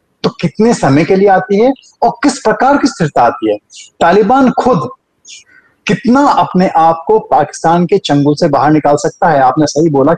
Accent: Indian